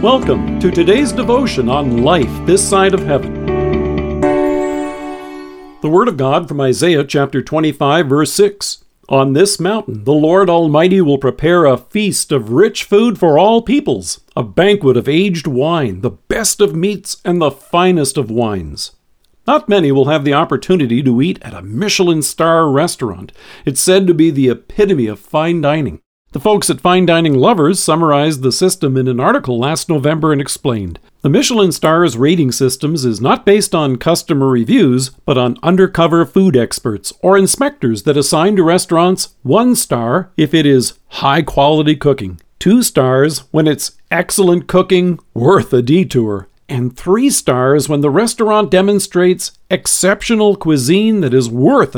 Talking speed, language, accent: 160 wpm, English, American